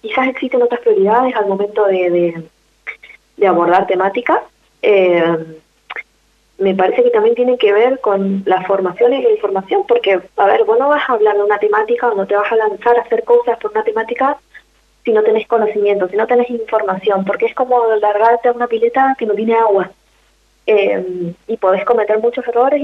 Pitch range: 205-260 Hz